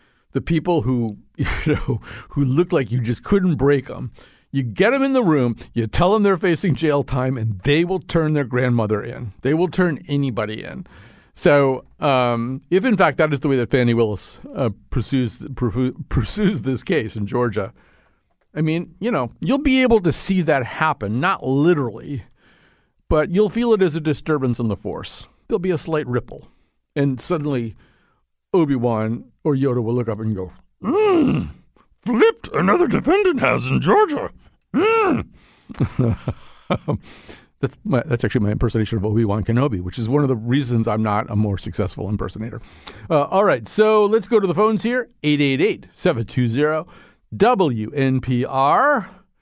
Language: English